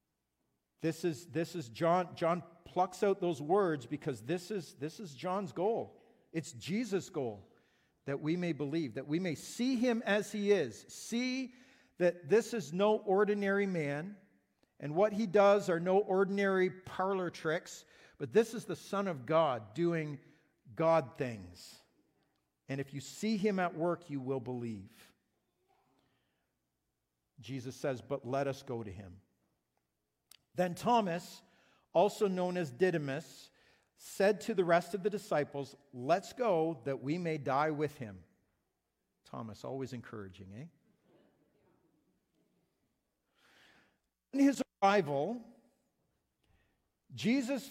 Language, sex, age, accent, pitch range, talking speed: English, male, 50-69, American, 140-195 Hz, 130 wpm